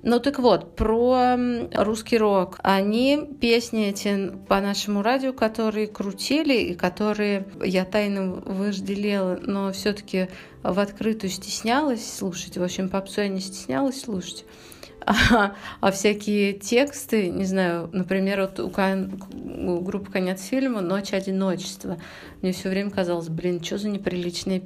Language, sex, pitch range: Russian, female, 185-215 Hz